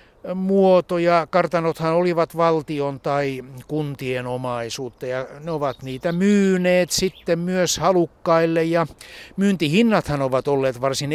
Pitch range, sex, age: 130-160 Hz, male, 60-79